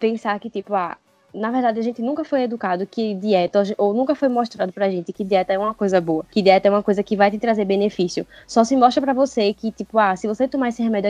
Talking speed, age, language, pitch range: 260 wpm, 10-29, Portuguese, 200-260 Hz